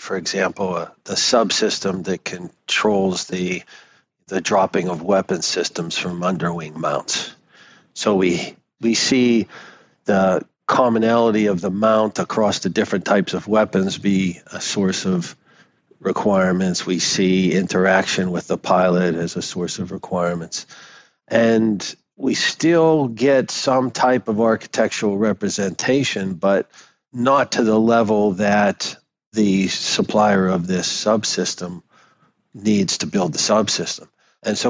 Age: 50-69